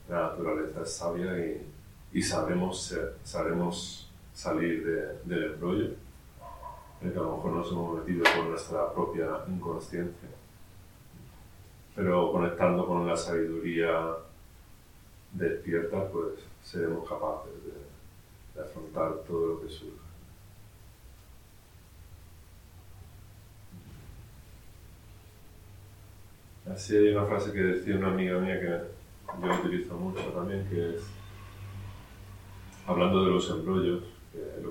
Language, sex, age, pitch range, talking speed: Spanish, male, 30-49, 85-95 Hz, 105 wpm